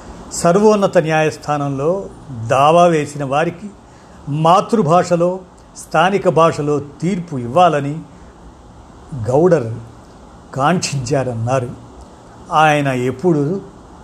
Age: 50-69